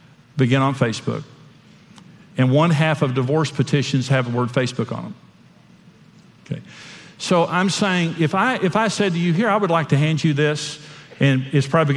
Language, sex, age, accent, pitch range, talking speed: English, male, 50-69, American, 140-185 Hz, 185 wpm